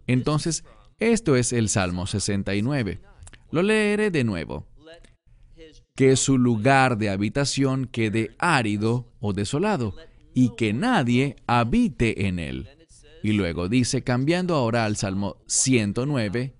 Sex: male